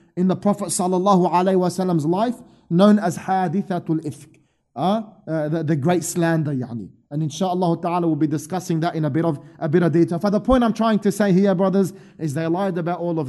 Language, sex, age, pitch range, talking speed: English, male, 30-49, 175-225 Hz, 210 wpm